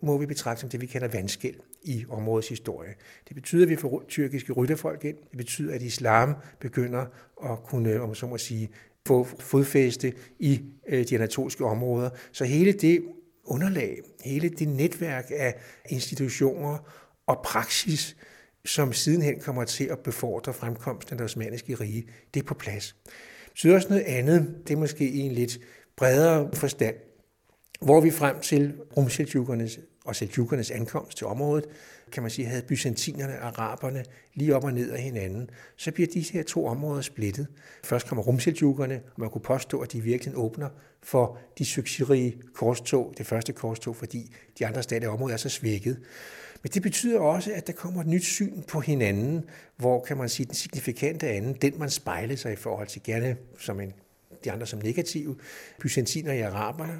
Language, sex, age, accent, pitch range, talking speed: Danish, male, 60-79, native, 120-150 Hz, 175 wpm